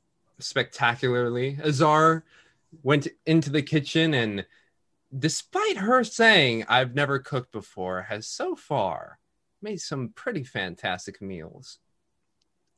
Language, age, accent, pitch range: English, 20-39, American, 120-155 Hz